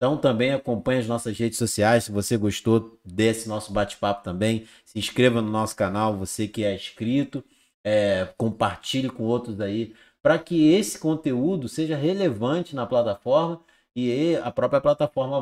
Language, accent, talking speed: Portuguese, Brazilian, 150 wpm